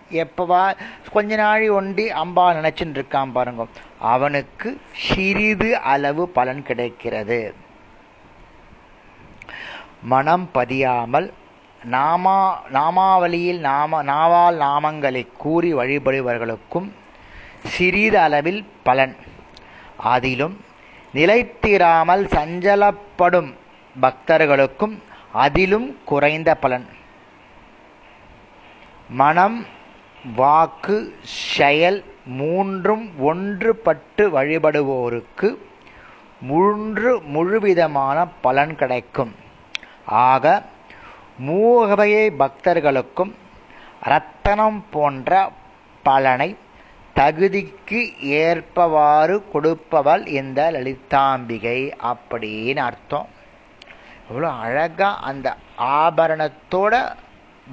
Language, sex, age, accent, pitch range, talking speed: Tamil, male, 30-49, native, 130-185 Hz, 50 wpm